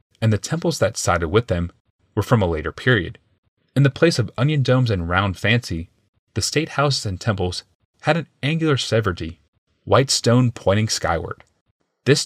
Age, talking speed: 30-49, 170 wpm